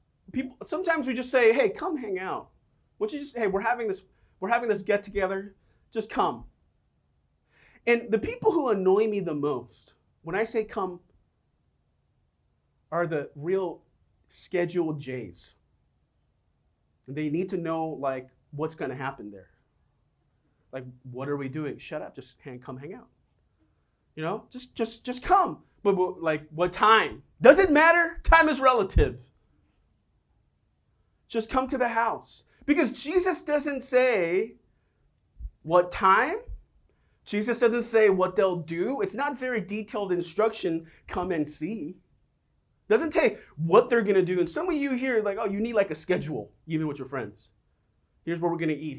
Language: English